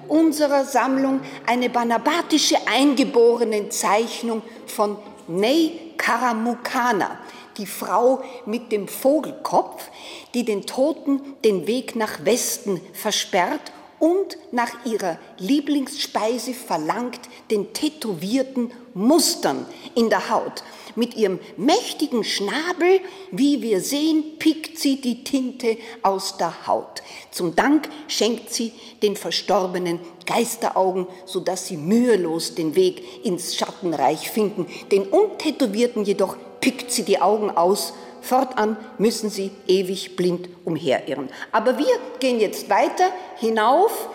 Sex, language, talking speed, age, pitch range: female, German, 110 wpm, 50-69, 205-280 Hz